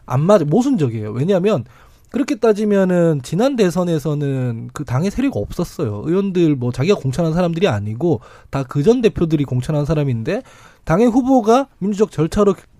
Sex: male